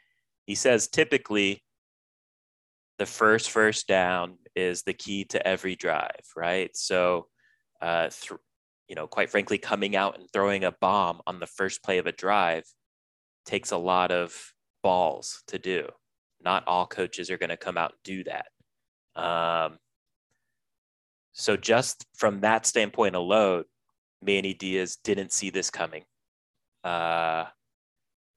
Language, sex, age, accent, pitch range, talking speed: English, male, 30-49, American, 85-100 Hz, 135 wpm